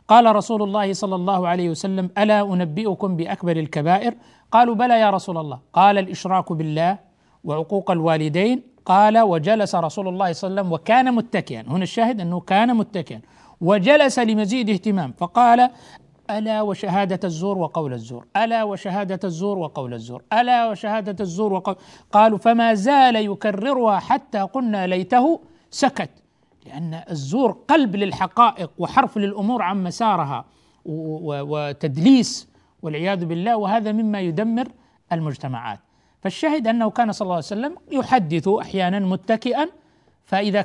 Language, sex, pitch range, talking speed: Arabic, male, 165-220 Hz, 130 wpm